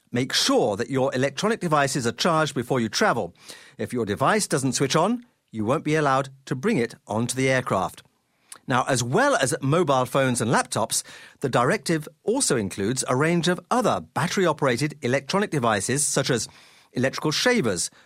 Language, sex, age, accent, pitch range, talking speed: English, male, 50-69, British, 130-195 Hz, 165 wpm